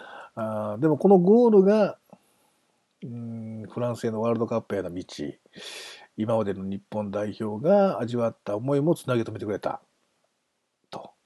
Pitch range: 110-165 Hz